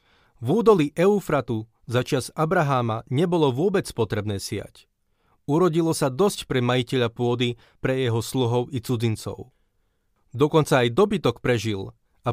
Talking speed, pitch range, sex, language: 125 wpm, 120-155 Hz, male, Slovak